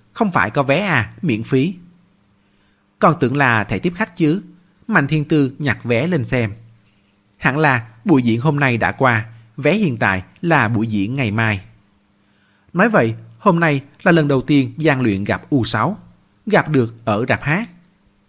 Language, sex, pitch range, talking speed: Vietnamese, male, 105-155 Hz, 175 wpm